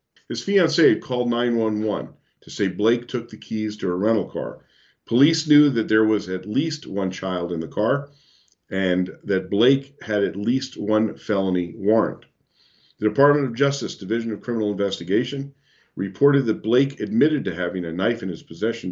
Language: English